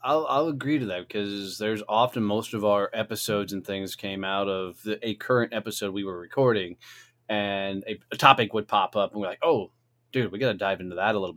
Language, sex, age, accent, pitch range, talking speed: English, male, 20-39, American, 100-120 Hz, 225 wpm